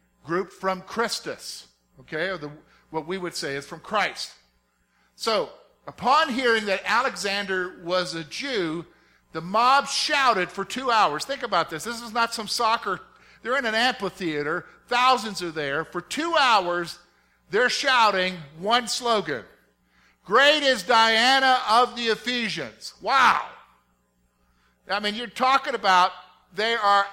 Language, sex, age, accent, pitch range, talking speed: English, male, 50-69, American, 155-235 Hz, 135 wpm